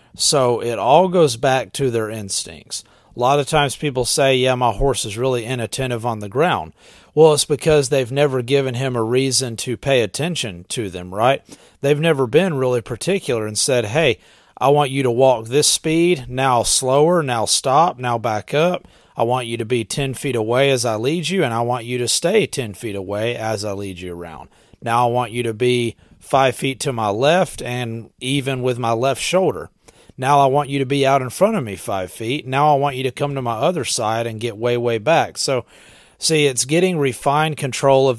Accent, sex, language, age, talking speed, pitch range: American, male, English, 30-49, 215 wpm, 115-140 Hz